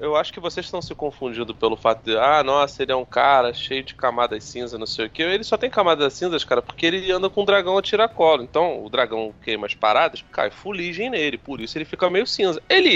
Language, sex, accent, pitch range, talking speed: Portuguese, male, Brazilian, 145-215 Hz, 255 wpm